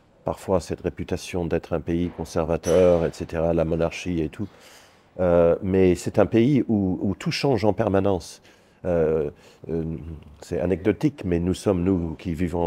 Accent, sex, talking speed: French, male, 155 wpm